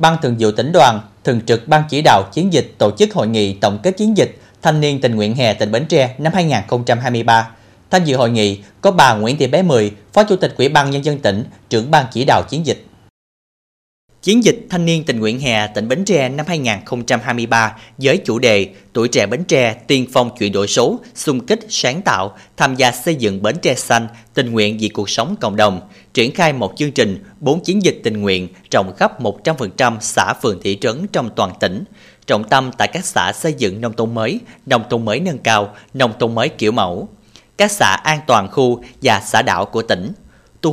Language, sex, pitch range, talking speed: Vietnamese, male, 110-145 Hz, 215 wpm